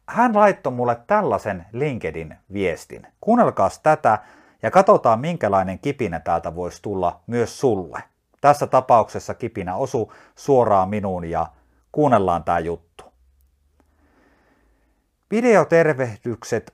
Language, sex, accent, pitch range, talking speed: Finnish, male, native, 95-160 Hz, 95 wpm